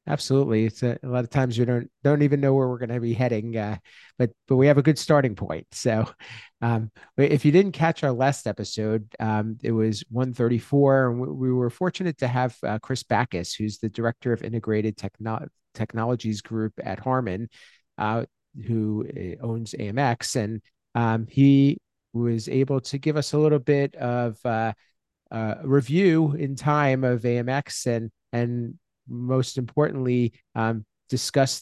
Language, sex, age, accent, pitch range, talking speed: English, male, 40-59, American, 110-135 Hz, 170 wpm